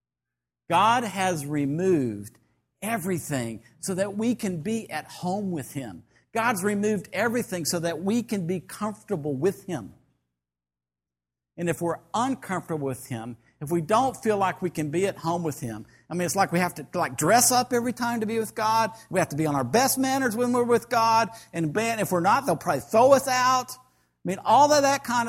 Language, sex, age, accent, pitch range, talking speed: English, male, 50-69, American, 145-230 Hz, 205 wpm